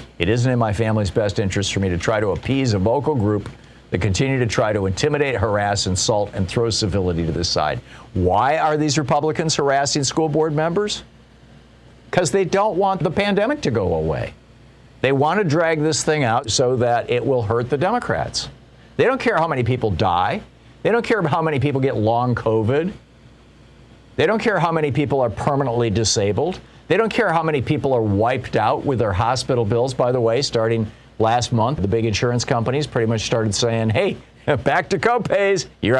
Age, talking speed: 50-69, 195 wpm